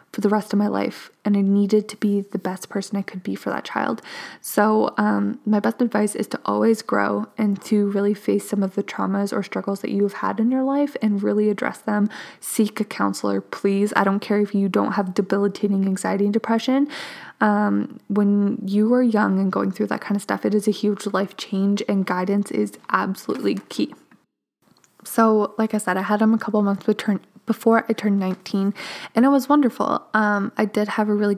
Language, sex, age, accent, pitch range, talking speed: English, female, 20-39, American, 200-220 Hz, 220 wpm